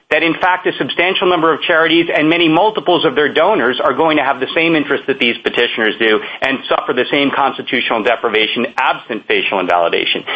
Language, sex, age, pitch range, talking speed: English, male, 40-59, 150-210 Hz, 195 wpm